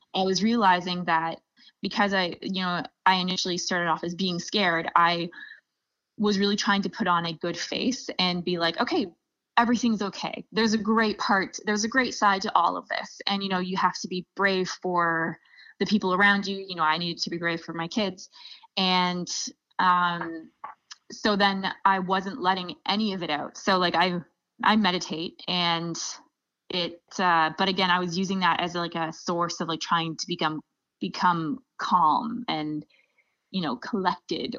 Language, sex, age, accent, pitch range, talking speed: English, female, 20-39, American, 170-195 Hz, 185 wpm